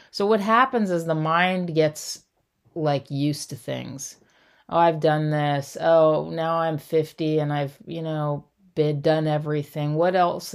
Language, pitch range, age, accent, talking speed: English, 135-165 Hz, 30-49, American, 160 wpm